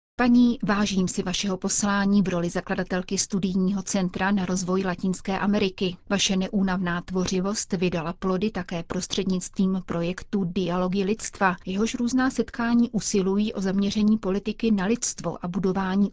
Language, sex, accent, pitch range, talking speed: Czech, female, native, 175-205 Hz, 130 wpm